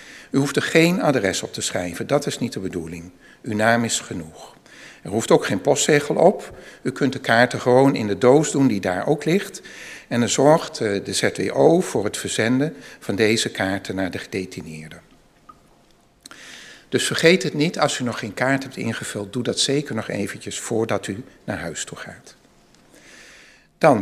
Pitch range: 110-150 Hz